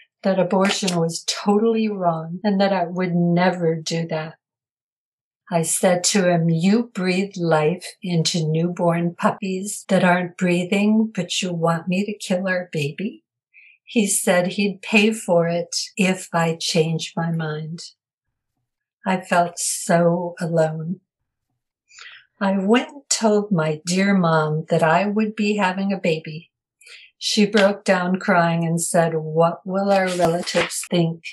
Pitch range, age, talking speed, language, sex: 170-200 Hz, 60-79, 140 wpm, English, female